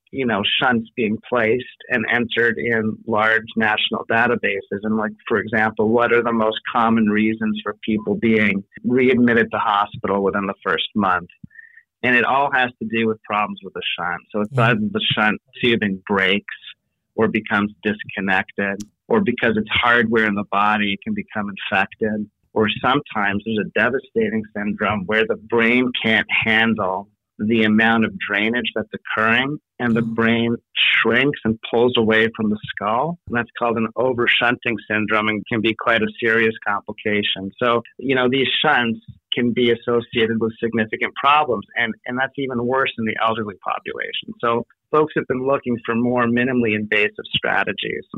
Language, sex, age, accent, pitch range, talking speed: English, male, 40-59, American, 105-120 Hz, 165 wpm